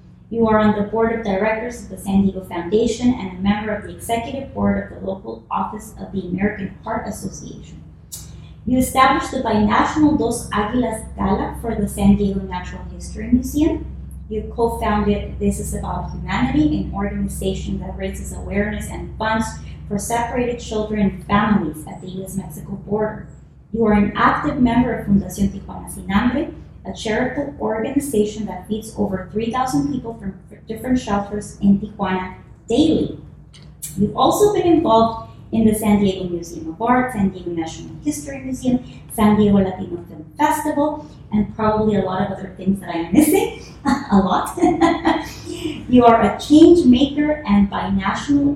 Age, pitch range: 20-39, 195-250 Hz